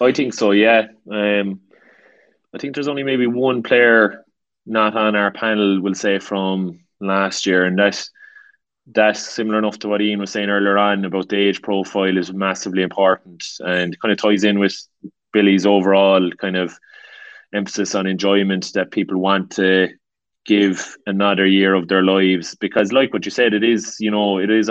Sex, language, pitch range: male, English, 95-105 Hz